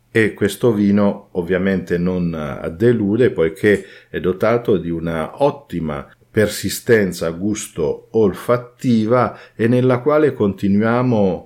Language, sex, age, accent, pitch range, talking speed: Italian, male, 50-69, native, 90-110 Hz, 100 wpm